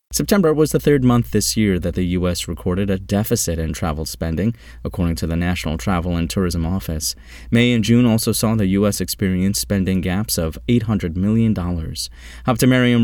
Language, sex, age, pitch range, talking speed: English, male, 30-49, 85-120 Hz, 175 wpm